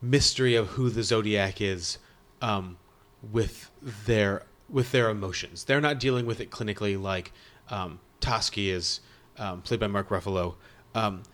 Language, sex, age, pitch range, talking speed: English, male, 30-49, 100-130 Hz, 150 wpm